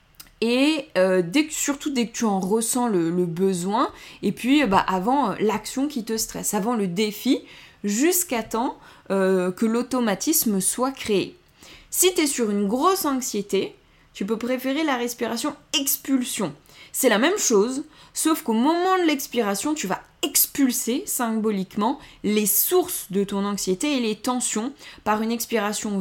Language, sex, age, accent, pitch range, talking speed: French, female, 20-39, French, 200-280 Hz, 160 wpm